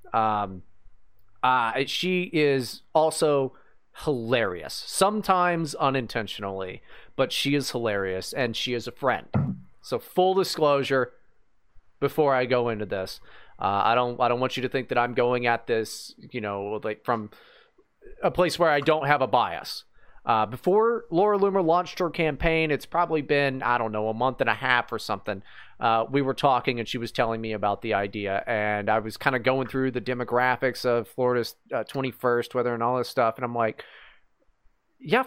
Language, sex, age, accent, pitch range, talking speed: English, male, 30-49, American, 115-180 Hz, 180 wpm